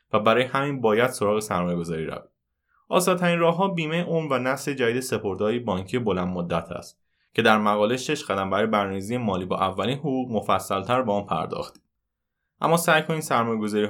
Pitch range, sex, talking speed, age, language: 95-125 Hz, male, 170 wpm, 20-39, Persian